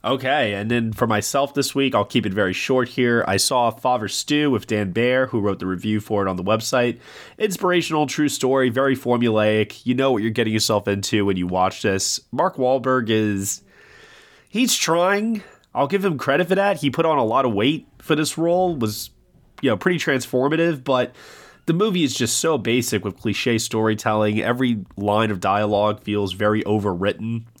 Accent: American